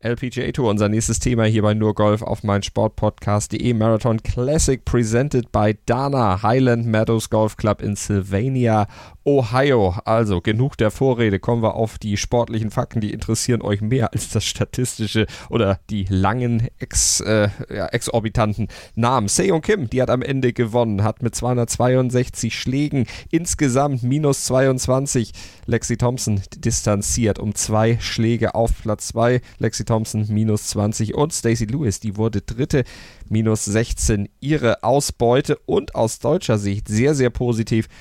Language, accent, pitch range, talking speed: German, German, 105-125 Hz, 150 wpm